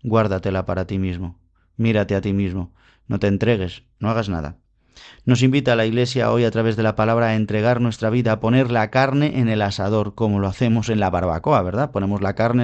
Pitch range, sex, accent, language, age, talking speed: 105-125 Hz, male, Spanish, Spanish, 30-49, 220 wpm